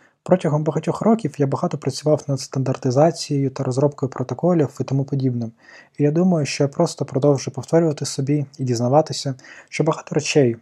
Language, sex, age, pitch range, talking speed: Ukrainian, male, 20-39, 130-155 Hz, 160 wpm